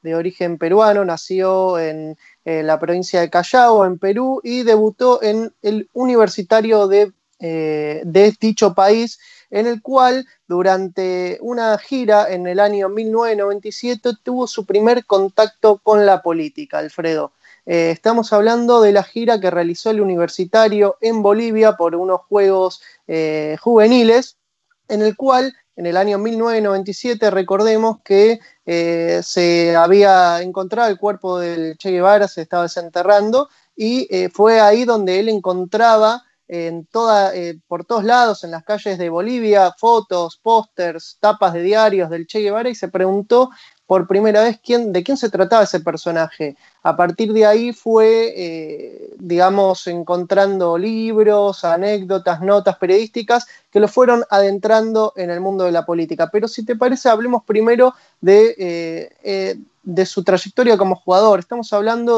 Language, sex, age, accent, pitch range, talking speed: Spanish, male, 20-39, Argentinian, 180-225 Hz, 145 wpm